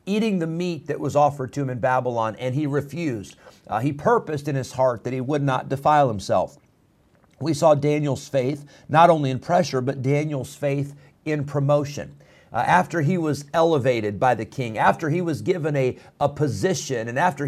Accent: American